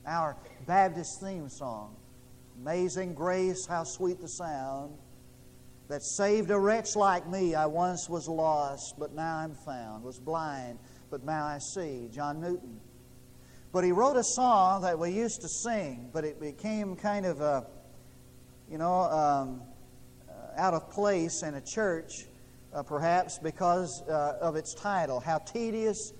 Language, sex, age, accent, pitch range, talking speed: English, male, 50-69, American, 135-200 Hz, 150 wpm